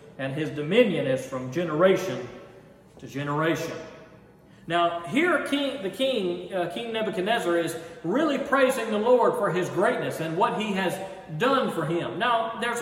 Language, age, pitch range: English, 40-59, 155-215 Hz